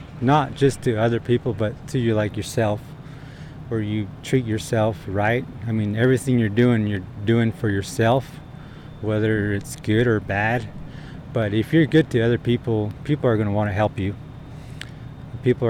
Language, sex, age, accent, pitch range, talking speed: English, male, 20-39, American, 110-130 Hz, 170 wpm